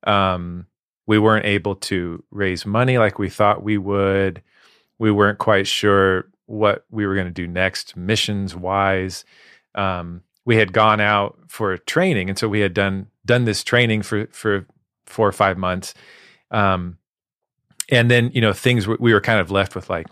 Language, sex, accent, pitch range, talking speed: English, male, American, 95-110 Hz, 175 wpm